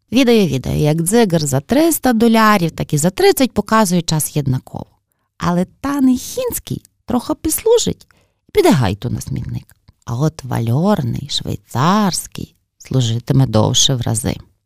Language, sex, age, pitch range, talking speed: Ukrainian, female, 30-49, 140-220 Hz, 125 wpm